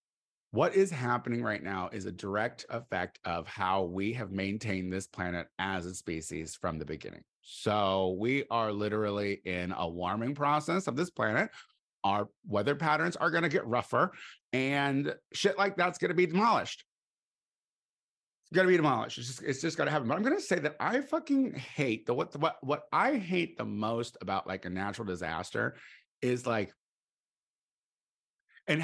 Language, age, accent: English, 30-49, American